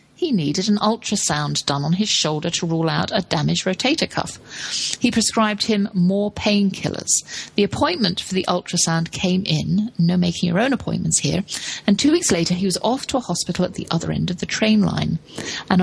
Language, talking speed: English, 195 wpm